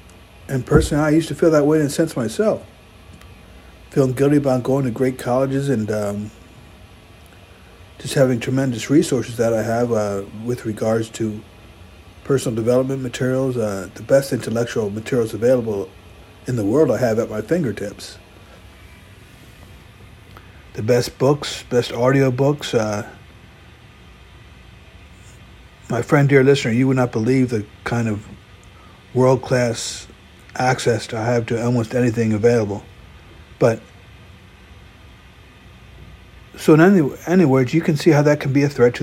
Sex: male